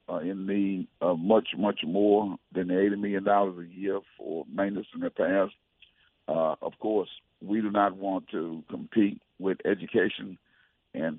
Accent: American